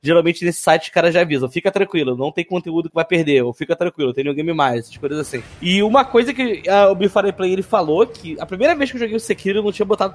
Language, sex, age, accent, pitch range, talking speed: Portuguese, male, 20-39, Brazilian, 145-200 Hz, 285 wpm